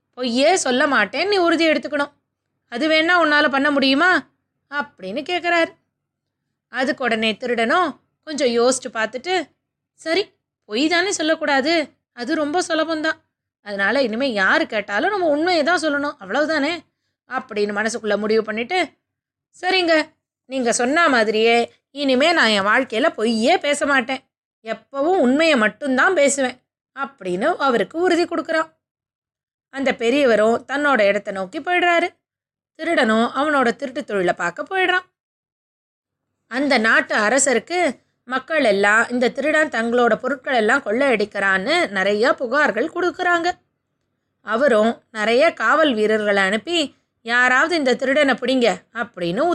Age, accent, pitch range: 20-39, native, 235-320 Hz